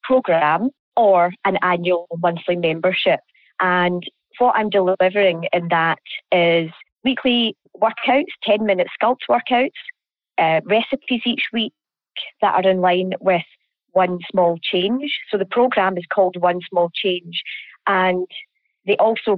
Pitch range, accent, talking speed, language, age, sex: 170-215 Hz, British, 125 wpm, English, 30-49, female